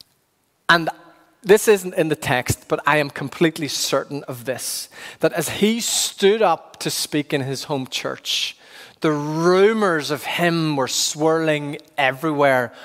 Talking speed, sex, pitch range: 145 wpm, male, 135-190 Hz